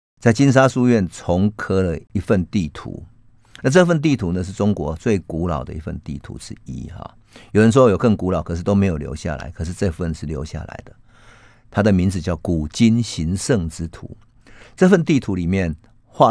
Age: 50-69